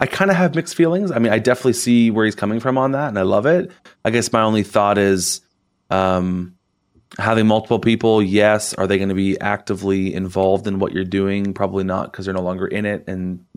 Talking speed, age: 235 wpm, 30-49